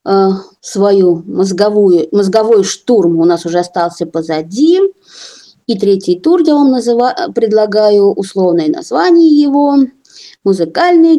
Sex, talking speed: female, 100 wpm